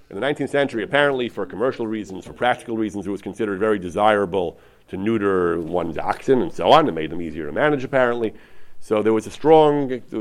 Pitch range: 105-145 Hz